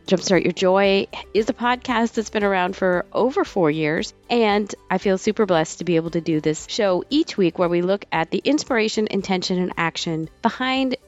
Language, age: English, 40-59